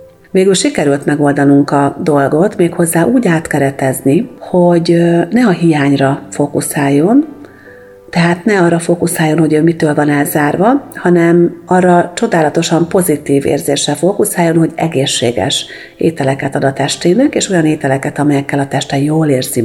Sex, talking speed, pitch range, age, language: female, 130 wpm, 145-175 Hz, 40-59, Hungarian